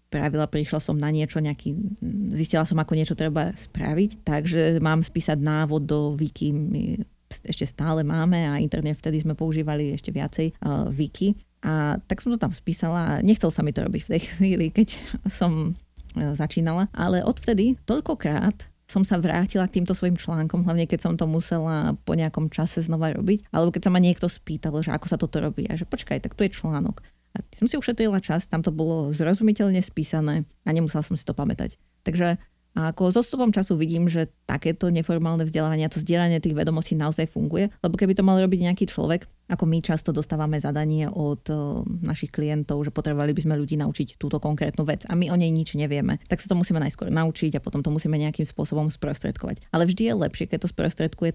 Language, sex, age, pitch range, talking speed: Slovak, female, 30-49, 155-180 Hz, 195 wpm